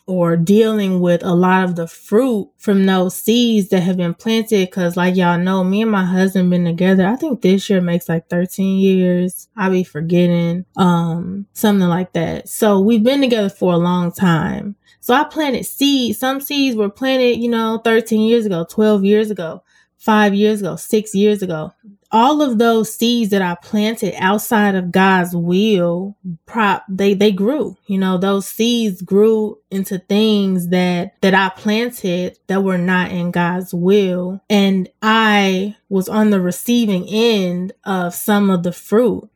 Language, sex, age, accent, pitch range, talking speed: English, female, 20-39, American, 180-215 Hz, 175 wpm